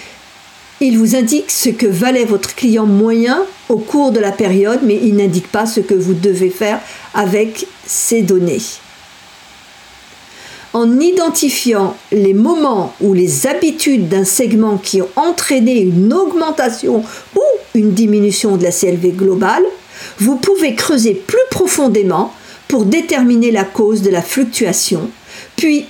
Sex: female